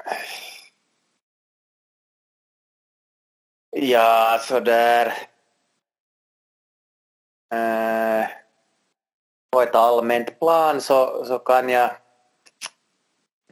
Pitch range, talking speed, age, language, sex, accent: 105-115 Hz, 55 wpm, 30-49, Swedish, male, Finnish